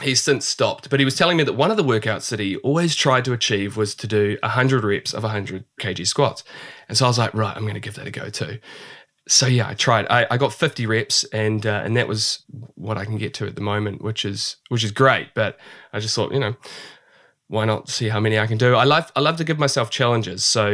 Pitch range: 105-130 Hz